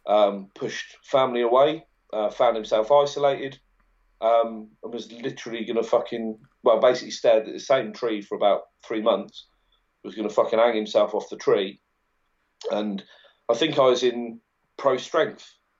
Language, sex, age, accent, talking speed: English, male, 40-59, British, 160 wpm